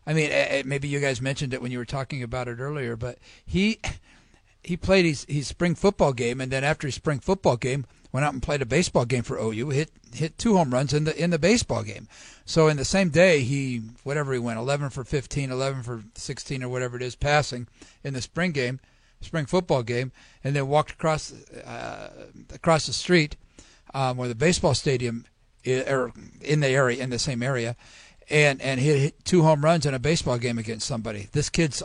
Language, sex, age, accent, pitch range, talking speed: English, male, 50-69, American, 120-155 Hz, 215 wpm